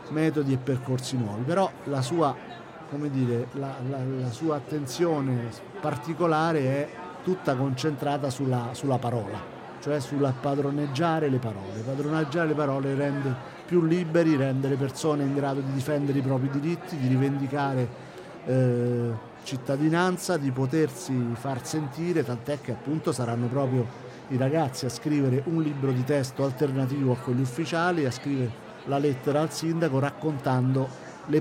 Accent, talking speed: native, 145 wpm